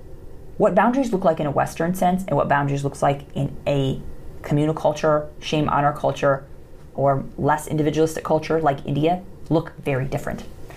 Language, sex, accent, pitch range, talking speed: English, female, American, 140-170 Hz, 160 wpm